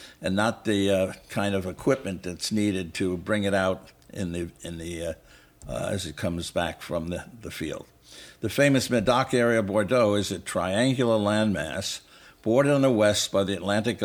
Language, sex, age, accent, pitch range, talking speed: English, male, 60-79, American, 95-115 Hz, 190 wpm